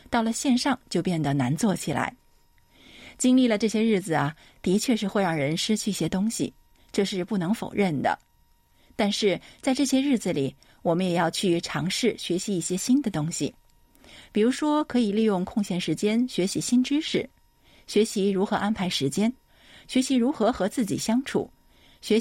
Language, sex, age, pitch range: Chinese, female, 50-69, 165-230 Hz